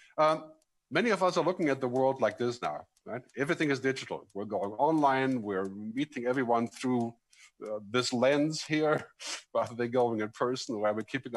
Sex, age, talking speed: male, 50-69, 185 wpm